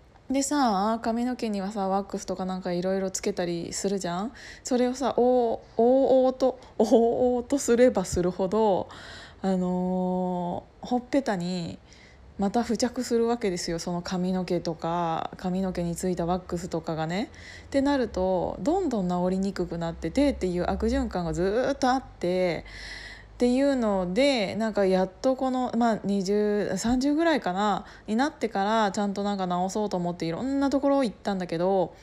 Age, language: 20-39, Japanese